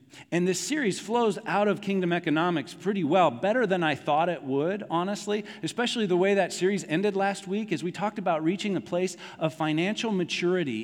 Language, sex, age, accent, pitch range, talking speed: English, male, 40-59, American, 135-185 Hz, 195 wpm